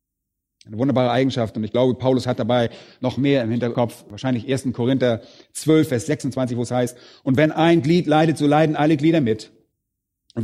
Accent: German